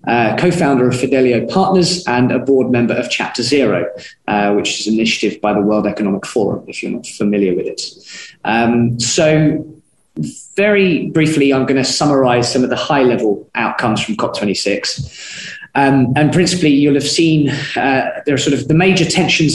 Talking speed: 180 wpm